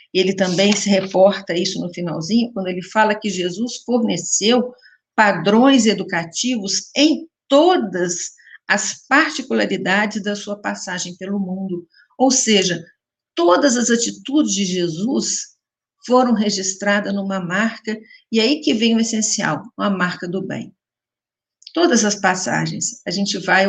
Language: Portuguese